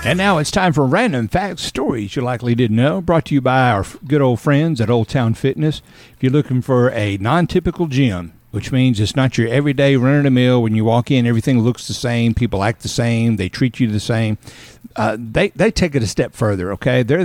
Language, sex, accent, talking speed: English, male, American, 225 wpm